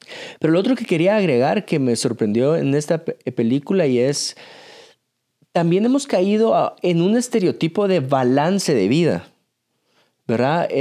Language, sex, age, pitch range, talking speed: Spanish, male, 30-49, 125-185 Hz, 140 wpm